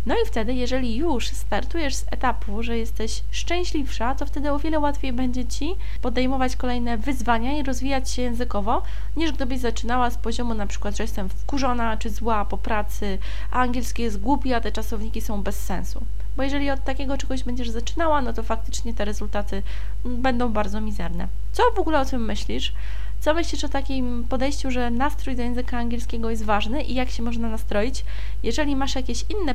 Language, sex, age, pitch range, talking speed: Polish, female, 20-39, 225-275 Hz, 185 wpm